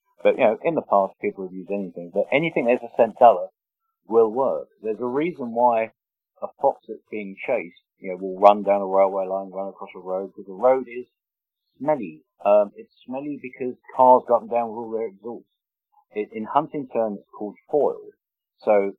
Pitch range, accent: 100-135 Hz, British